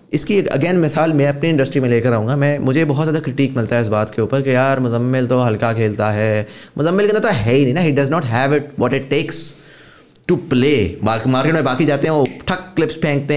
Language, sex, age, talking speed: English, male, 20-39, 240 wpm